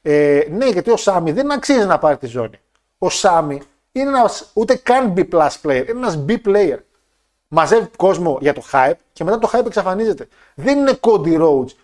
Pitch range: 160-245 Hz